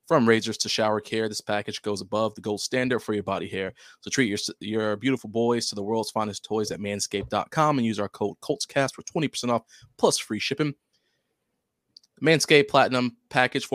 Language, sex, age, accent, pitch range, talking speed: English, male, 20-39, American, 105-125 Hz, 190 wpm